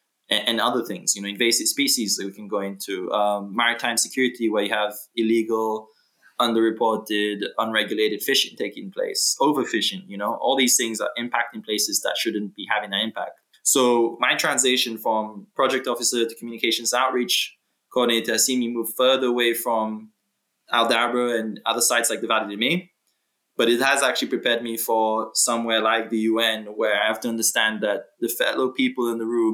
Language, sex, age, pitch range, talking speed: English, male, 20-39, 110-120 Hz, 180 wpm